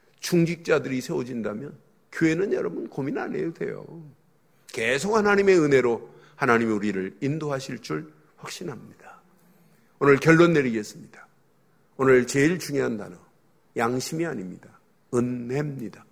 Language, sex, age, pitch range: Korean, male, 50-69, 140-225 Hz